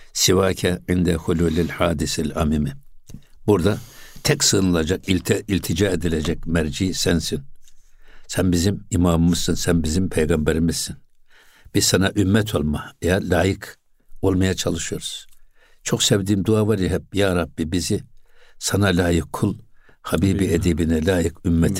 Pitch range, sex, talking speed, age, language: 85-110 Hz, male, 115 wpm, 60-79, Turkish